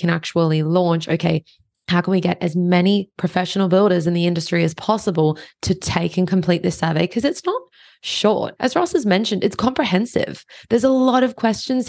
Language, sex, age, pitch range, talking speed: English, female, 20-39, 170-200 Hz, 190 wpm